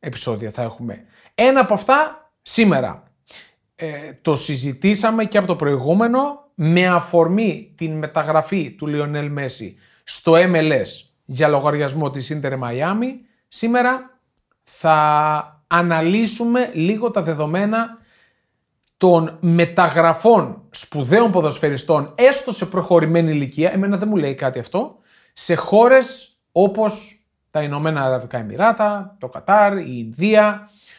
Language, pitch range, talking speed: Greek, 145-205 Hz, 115 wpm